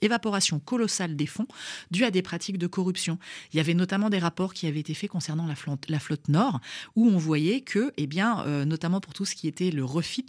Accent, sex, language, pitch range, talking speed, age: French, female, French, 150-190 Hz, 240 wpm, 30-49